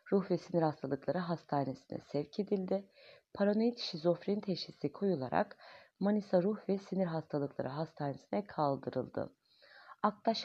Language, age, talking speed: Turkish, 40-59, 110 wpm